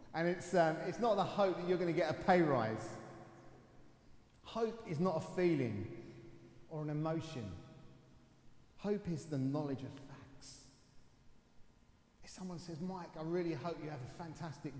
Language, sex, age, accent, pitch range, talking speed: English, male, 30-49, British, 115-145 Hz, 160 wpm